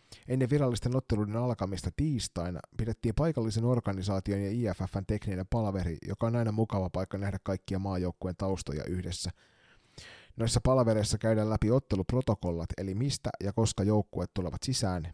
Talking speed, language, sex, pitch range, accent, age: 135 wpm, Finnish, male, 90-110 Hz, native, 30-49